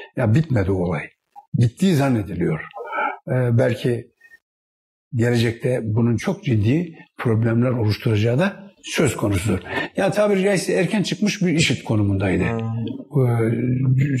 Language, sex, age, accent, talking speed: Turkish, male, 60-79, native, 110 wpm